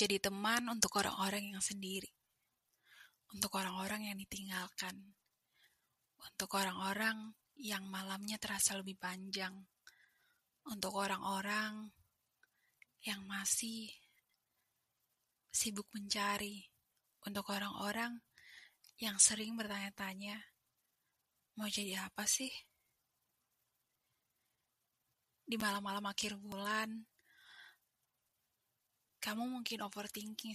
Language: Indonesian